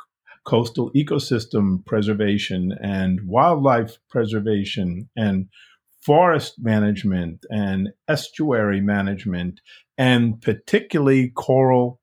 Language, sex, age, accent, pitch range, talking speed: English, male, 50-69, American, 105-130 Hz, 75 wpm